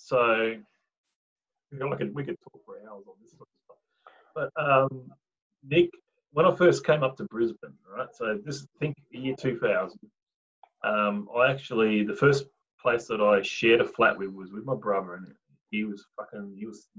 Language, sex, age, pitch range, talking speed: English, male, 30-49, 105-175 Hz, 200 wpm